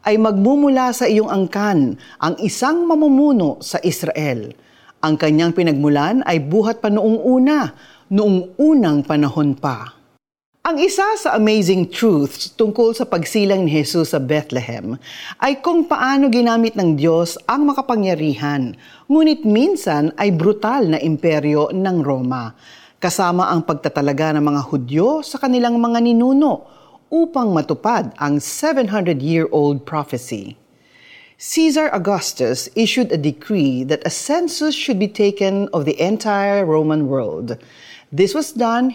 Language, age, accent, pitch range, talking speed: Filipino, 40-59, native, 155-240 Hz, 130 wpm